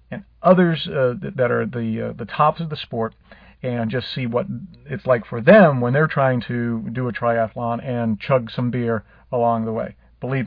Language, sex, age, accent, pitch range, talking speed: English, male, 40-59, American, 120-150 Hz, 195 wpm